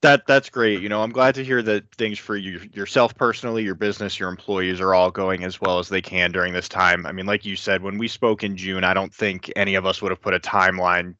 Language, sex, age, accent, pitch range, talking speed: English, male, 20-39, American, 95-115 Hz, 275 wpm